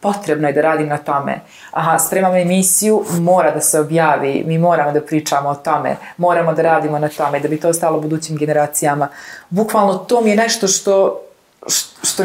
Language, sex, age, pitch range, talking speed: Croatian, female, 30-49, 160-205 Hz, 185 wpm